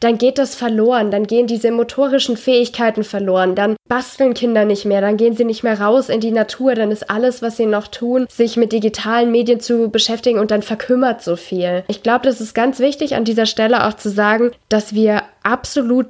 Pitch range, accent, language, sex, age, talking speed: 215-255 Hz, German, German, female, 20-39, 210 wpm